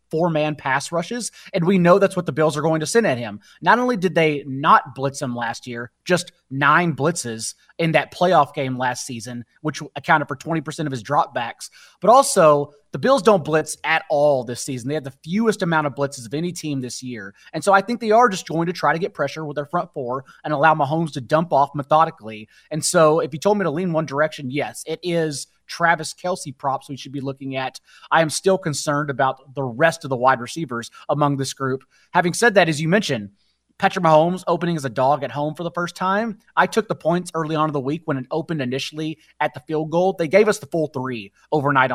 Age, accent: 30-49, American